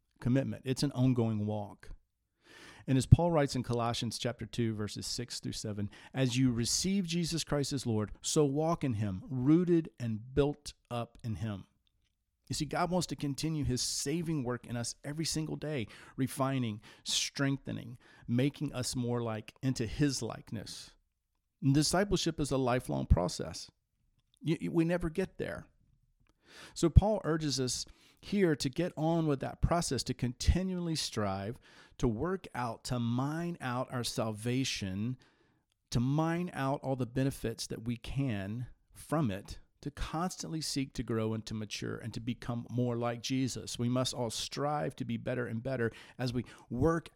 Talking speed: 160 wpm